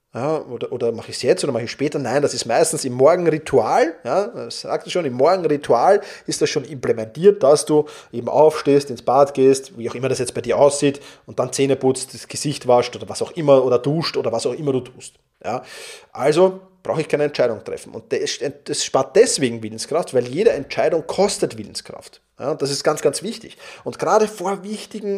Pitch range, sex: 140-205 Hz, male